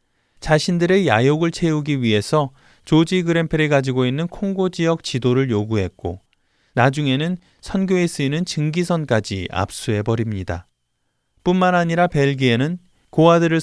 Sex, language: male, Korean